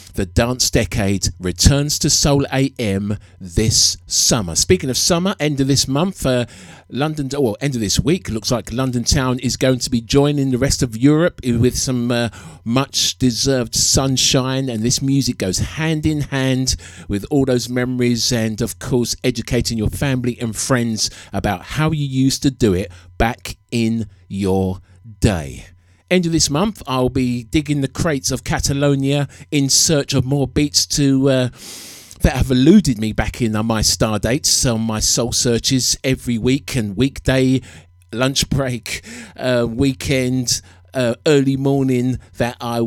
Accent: British